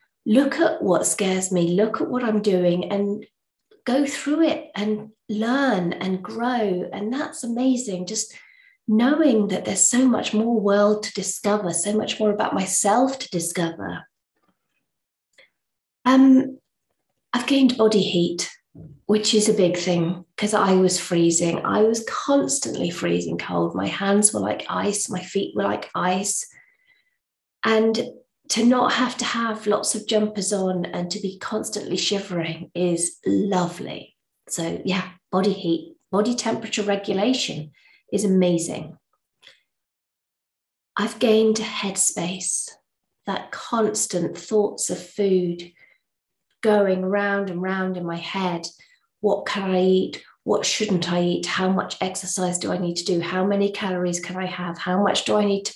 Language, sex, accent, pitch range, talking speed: English, female, British, 180-225 Hz, 145 wpm